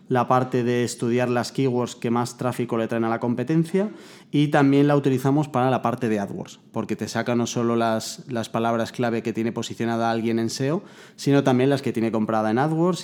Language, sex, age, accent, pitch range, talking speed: Spanish, male, 20-39, Spanish, 115-130 Hz, 210 wpm